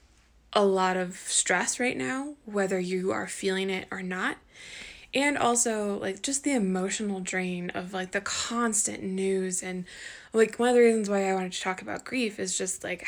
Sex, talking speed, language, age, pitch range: female, 190 wpm, English, 10-29, 185-215 Hz